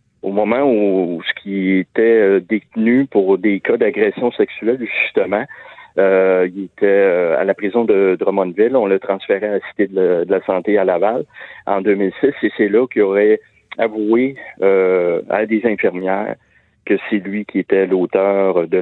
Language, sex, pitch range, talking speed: French, male, 90-110 Hz, 165 wpm